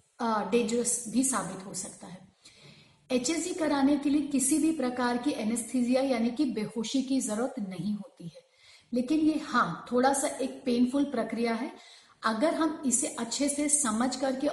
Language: Hindi